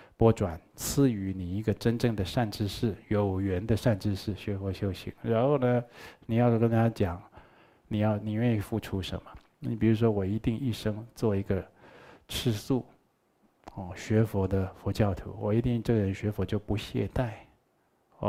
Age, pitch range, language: 20-39, 100-120 Hz, Chinese